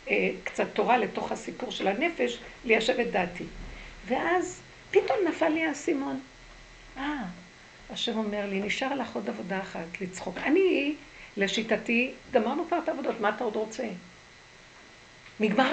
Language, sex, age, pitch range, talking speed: Hebrew, female, 60-79, 210-280 Hz, 135 wpm